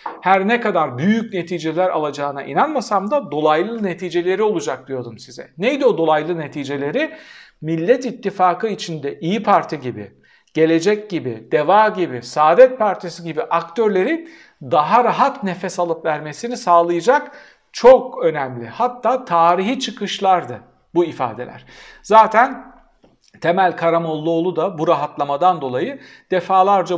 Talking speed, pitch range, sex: 115 wpm, 155-220 Hz, male